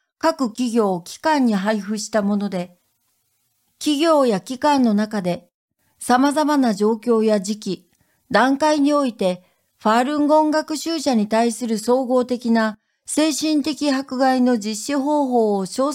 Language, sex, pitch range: Japanese, female, 210-290 Hz